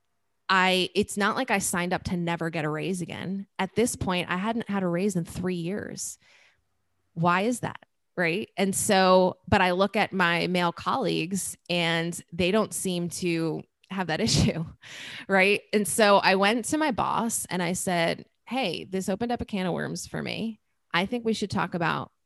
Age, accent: 20-39, American